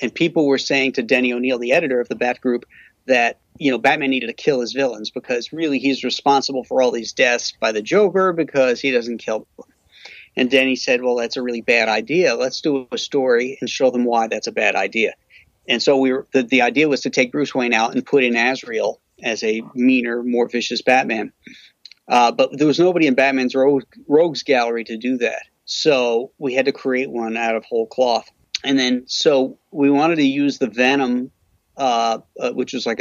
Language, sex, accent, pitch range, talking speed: English, male, American, 120-135 Hz, 215 wpm